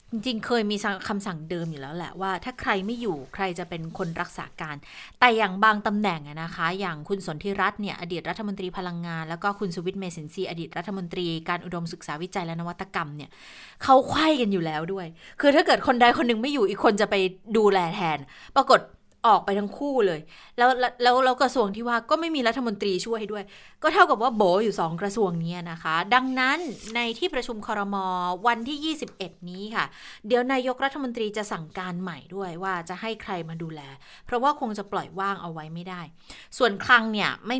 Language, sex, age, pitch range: Thai, female, 20-39, 170-225 Hz